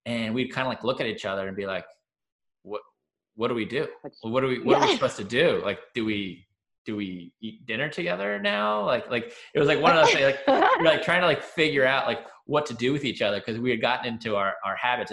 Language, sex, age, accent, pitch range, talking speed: English, male, 20-39, American, 100-125 Hz, 270 wpm